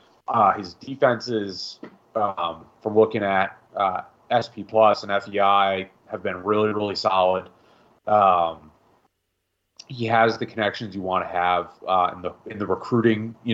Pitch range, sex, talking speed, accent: 95-115 Hz, male, 145 wpm, American